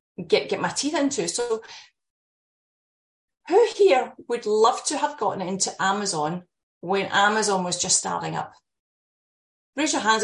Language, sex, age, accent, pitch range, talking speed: English, female, 30-49, British, 185-245 Hz, 140 wpm